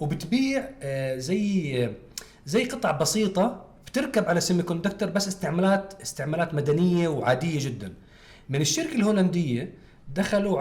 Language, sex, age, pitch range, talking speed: Arabic, male, 40-59, 120-160 Hz, 105 wpm